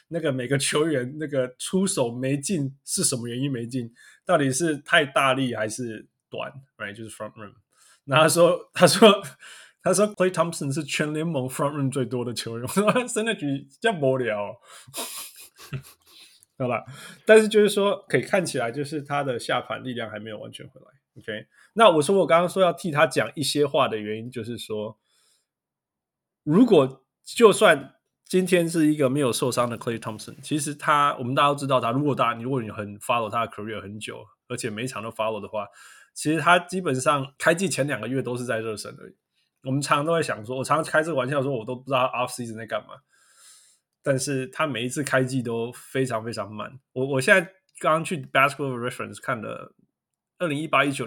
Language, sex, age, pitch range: Chinese, male, 20-39, 120-155 Hz